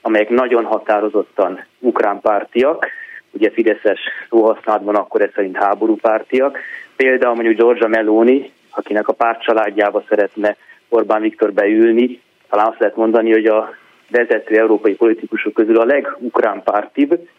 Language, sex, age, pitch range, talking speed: Hungarian, male, 30-49, 110-125 Hz, 115 wpm